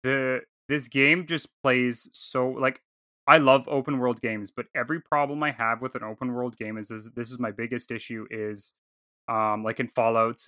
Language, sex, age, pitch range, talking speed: English, male, 20-39, 115-140 Hz, 195 wpm